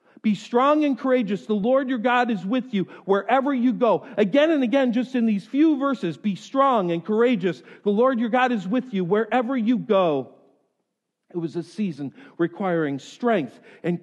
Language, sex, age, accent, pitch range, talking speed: English, male, 50-69, American, 205-255 Hz, 185 wpm